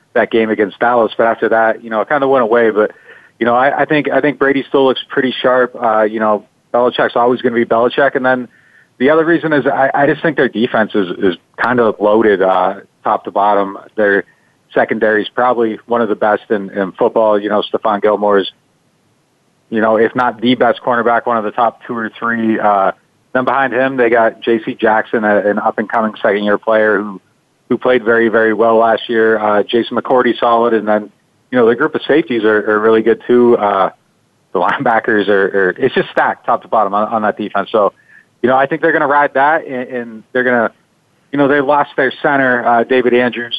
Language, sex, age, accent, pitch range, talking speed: English, male, 30-49, American, 105-125 Hz, 230 wpm